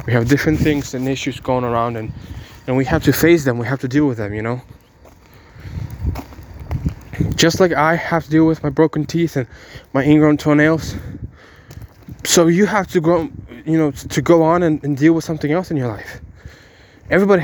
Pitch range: 125-155 Hz